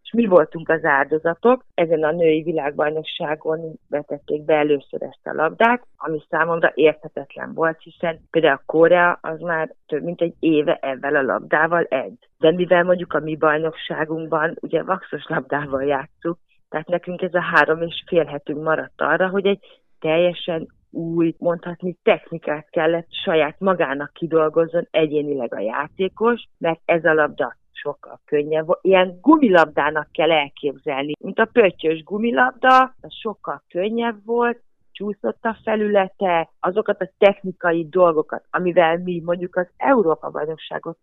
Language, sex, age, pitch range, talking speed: Hungarian, female, 40-59, 155-180 Hz, 140 wpm